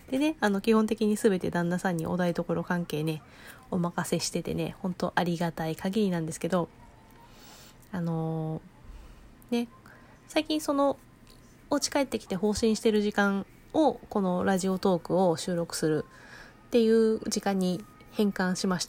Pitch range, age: 180-235 Hz, 20-39